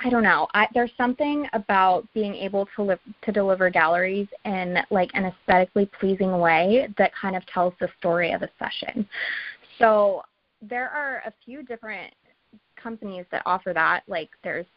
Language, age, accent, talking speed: English, 20-39, American, 160 wpm